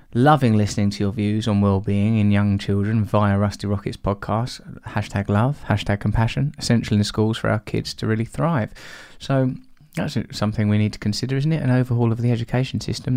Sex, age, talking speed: male, 20-39, 195 wpm